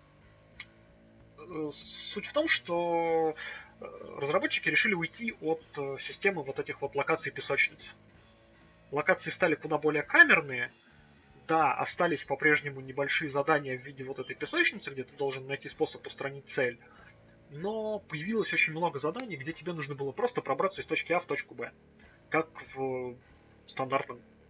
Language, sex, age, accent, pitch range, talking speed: Russian, male, 20-39, native, 130-165 Hz, 135 wpm